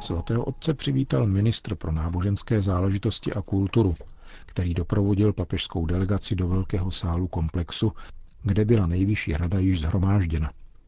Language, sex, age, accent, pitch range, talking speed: Czech, male, 50-69, native, 85-100 Hz, 125 wpm